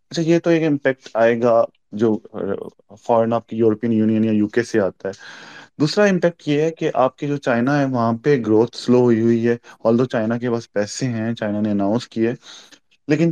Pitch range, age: 110-130 Hz, 20-39